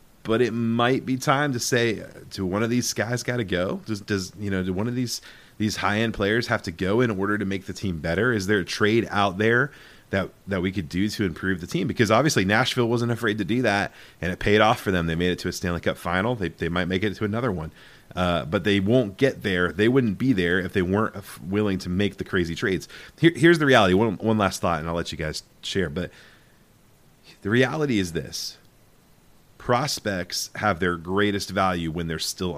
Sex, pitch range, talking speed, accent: male, 90-115 Hz, 235 wpm, American